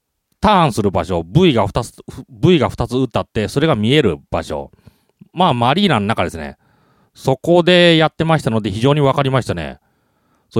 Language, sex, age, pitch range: Japanese, male, 40-59, 115-185 Hz